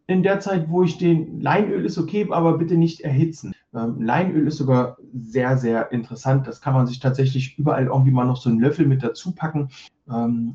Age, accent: 40-59, German